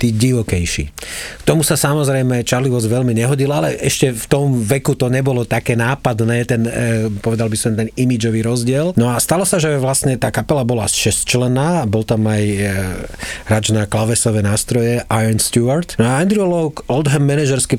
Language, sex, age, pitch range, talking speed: Slovak, male, 30-49, 110-135 Hz, 175 wpm